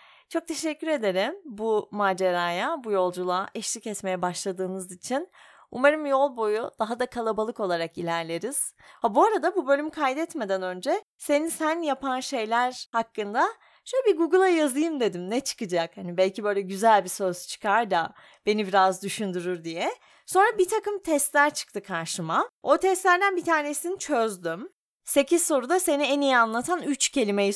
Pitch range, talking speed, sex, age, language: 195-300 Hz, 150 wpm, female, 30-49, Turkish